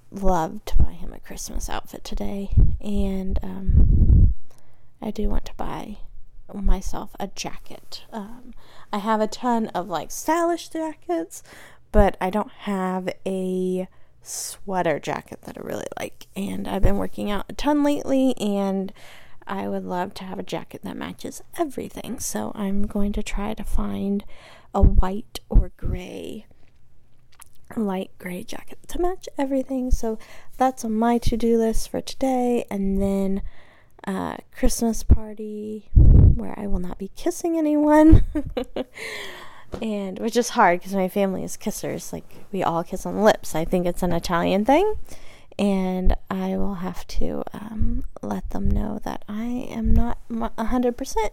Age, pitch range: 20-39, 185-245 Hz